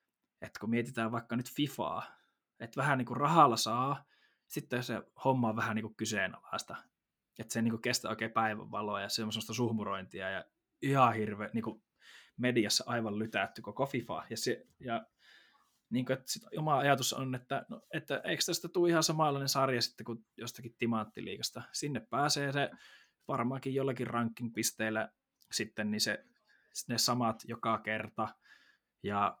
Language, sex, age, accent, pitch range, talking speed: Finnish, male, 20-39, native, 110-130 Hz, 155 wpm